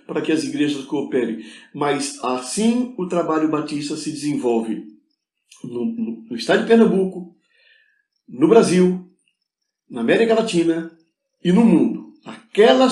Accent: Brazilian